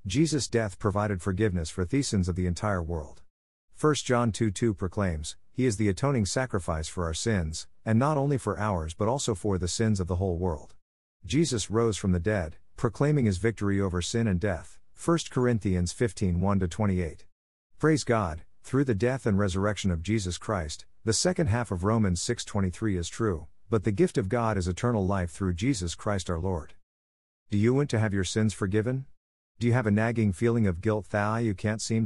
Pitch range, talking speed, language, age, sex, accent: 90-115 Hz, 195 wpm, English, 50-69, male, American